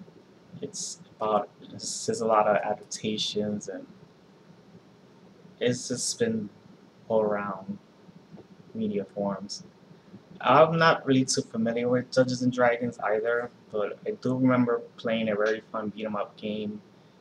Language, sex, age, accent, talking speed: English, male, 20-39, American, 120 wpm